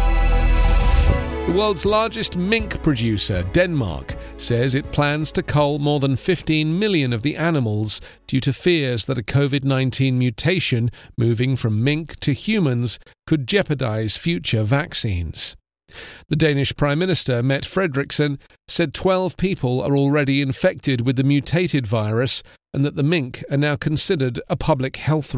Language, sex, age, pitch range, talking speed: English, male, 40-59, 120-155 Hz, 140 wpm